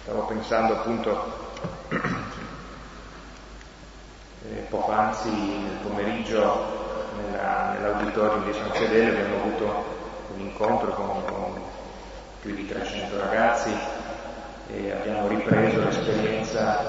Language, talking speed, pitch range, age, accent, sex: Italian, 95 wpm, 100-110 Hz, 30-49, native, male